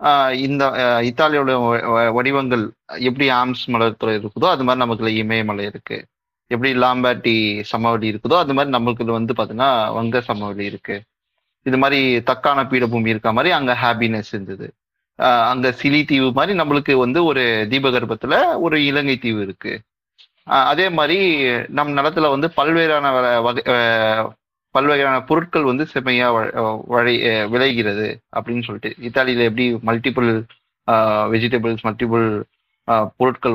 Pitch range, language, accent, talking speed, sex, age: 115-135 Hz, Tamil, native, 120 wpm, male, 30-49